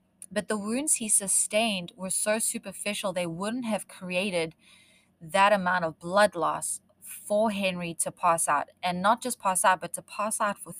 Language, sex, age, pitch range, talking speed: English, female, 20-39, 180-220 Hz, 180 wpm